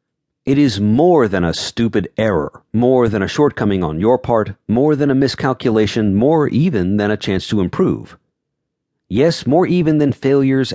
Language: English